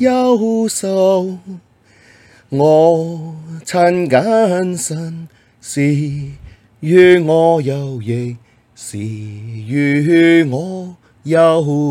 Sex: male